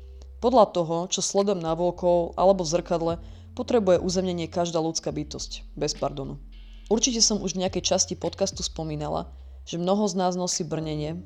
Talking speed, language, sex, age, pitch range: 155 wpm, Slovak, female, 20-39, 150-185 Hz